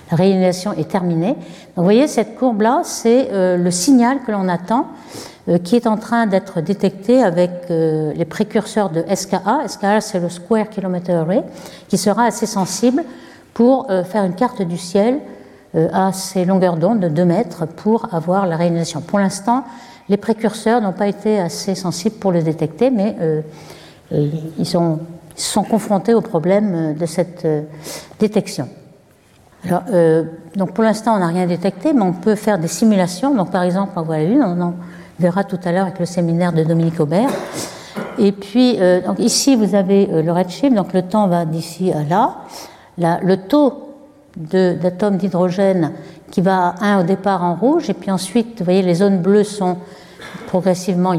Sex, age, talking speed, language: female, 60-79, 185 wpm, French